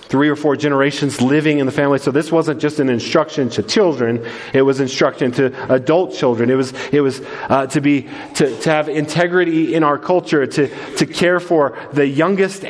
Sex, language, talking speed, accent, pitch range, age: male, English, 200 wpm, American, 125-160 Hz, 40-59